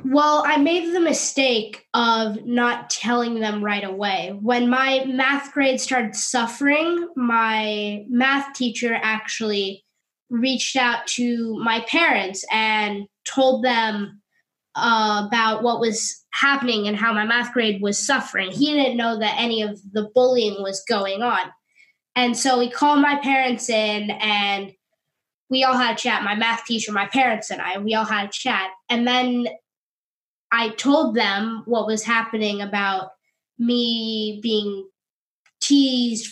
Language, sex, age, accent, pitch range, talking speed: English, female, 10-29, American, 210-260 Hz, 145 wpm